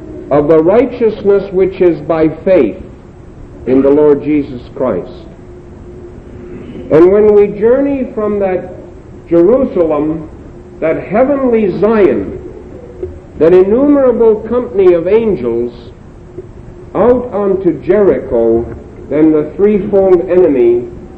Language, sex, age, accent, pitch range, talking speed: English, male, 60-79, American, 125-205 Hz, 95 wpm